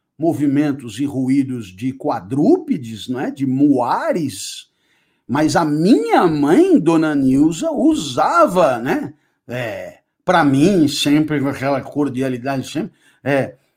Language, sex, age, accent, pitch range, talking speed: Portuguese, male, 60-79, Brazilian, 140-185 Hz, 110 wpm